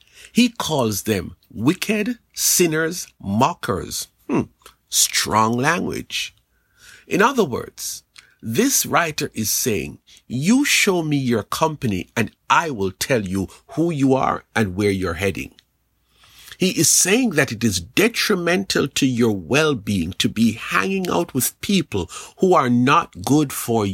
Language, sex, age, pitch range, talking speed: English, male, 50-69, 110-170 Hz, 135 wpm